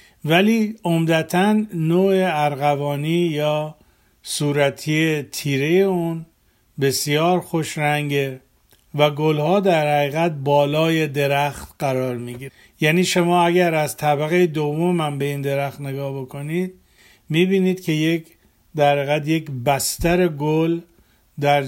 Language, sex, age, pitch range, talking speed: Persian, male, 50-69, 145-180 Hz, 110 wpm